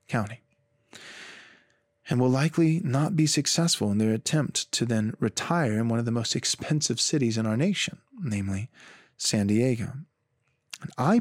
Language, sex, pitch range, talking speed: English, male, 115-160 Hz, 150 wpm